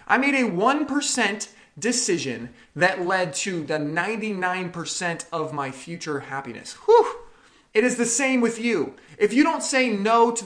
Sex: male